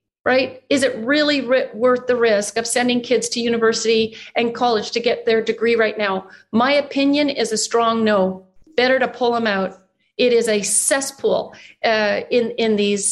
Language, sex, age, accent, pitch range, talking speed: English, female, 40-59, American, 220-250 Hz, 180 wpm